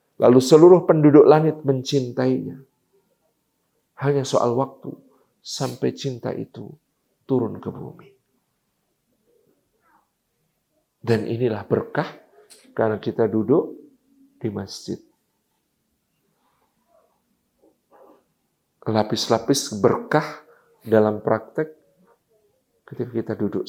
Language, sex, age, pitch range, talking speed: Indonesian, male, 50-69, 120-185 Hz, 75 wpm